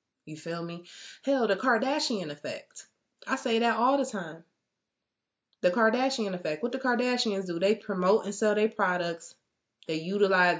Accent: American